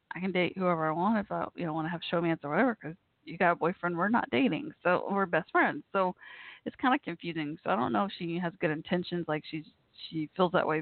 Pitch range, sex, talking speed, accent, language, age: 160-205 Hz, female, 265 wpm, American, English, 20-39